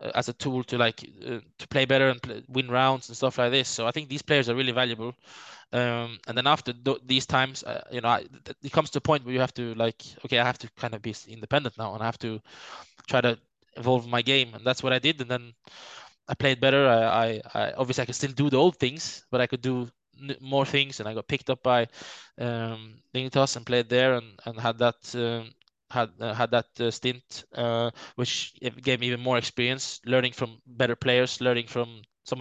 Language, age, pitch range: English, 20-39, 120-130 Hz